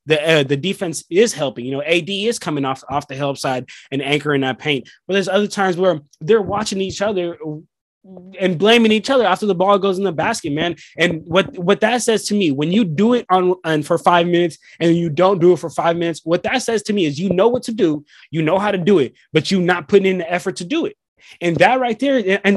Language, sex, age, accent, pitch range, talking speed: English, male, 20-39, American, 155-210 Hz, 260 wpm